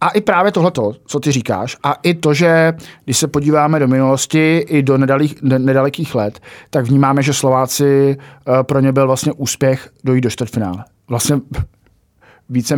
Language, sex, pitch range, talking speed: Czech, male, 125-150 Hz, 165 wpm